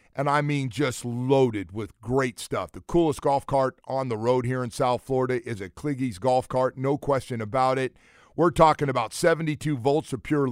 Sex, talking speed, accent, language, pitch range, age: male, 200 wpm, American, English, 130-180 Hz, 50-69